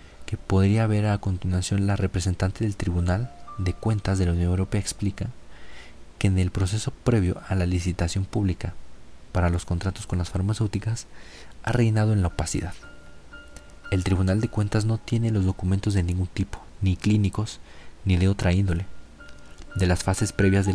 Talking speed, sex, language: 170 wpm, male, Spanish